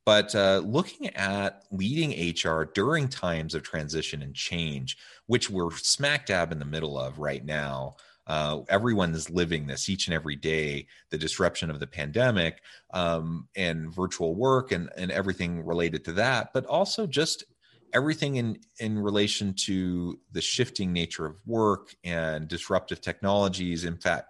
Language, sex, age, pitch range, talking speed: English, male, 30-49, 75-100 Hz, 155 wpm